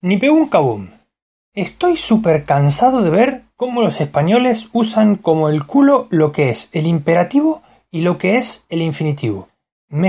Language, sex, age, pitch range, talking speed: Spanish, male, 20-39, 150-225 Hz, 160 wpm